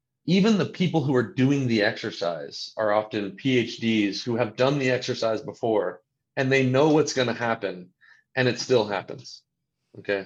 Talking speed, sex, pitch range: 170 wpm, male, 100-130 Hz